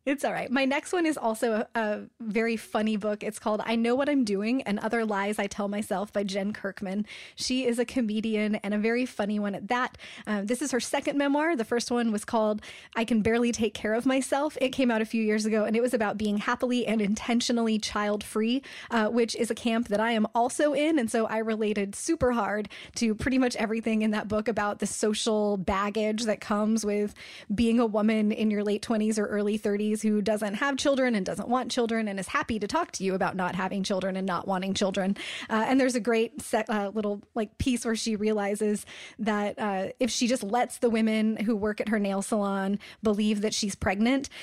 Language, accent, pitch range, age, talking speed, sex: English, American, 205-240 Hz, 20-39, 230 wpm, female